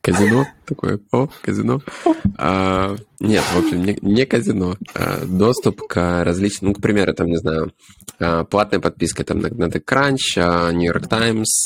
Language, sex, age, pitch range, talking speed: Ukrainian, male, 20-39, 85-100 Hz, 140 wpm